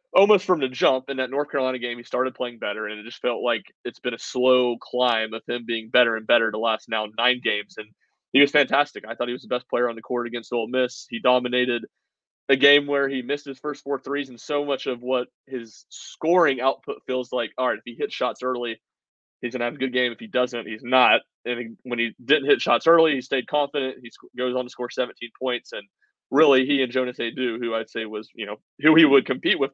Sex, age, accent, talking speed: male, 20-39, American, 250 wpm